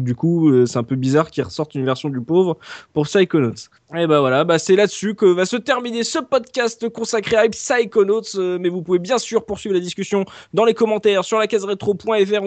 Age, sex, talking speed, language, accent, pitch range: 20-39, male, 210 wpm, French, French, 170-225 Hz